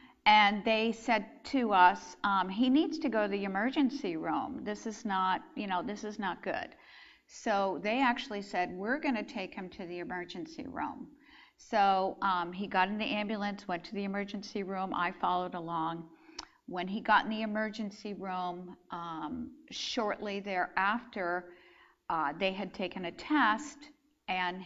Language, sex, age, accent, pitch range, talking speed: English, female, 50-69, American, 190-255 Hz, 165 wpm